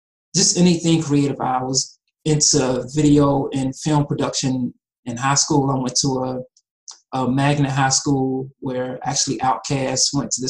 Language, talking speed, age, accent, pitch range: English, 155 wpm, 20-39, American, 130-150 Hz